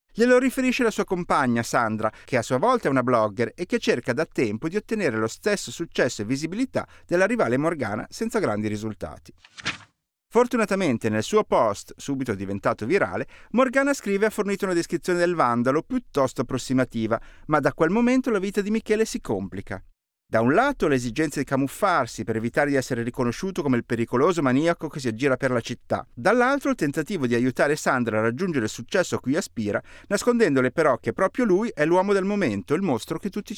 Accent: native